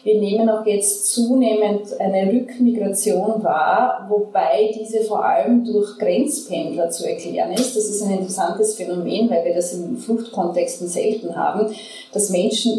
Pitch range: 185-230 Hz